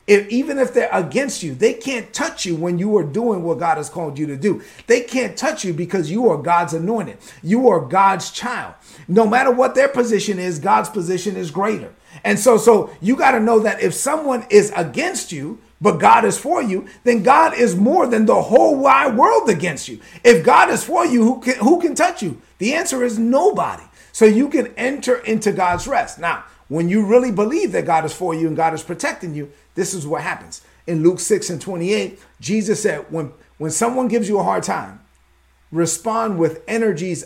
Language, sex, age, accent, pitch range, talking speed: English, male, 40-59, American, 170-235 Hz, 215 wpm